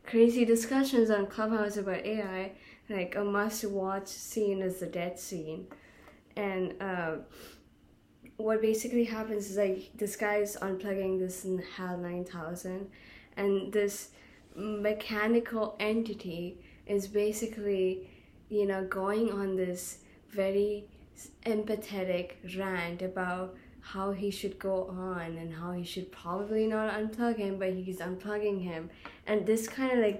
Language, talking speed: English, 130 wpm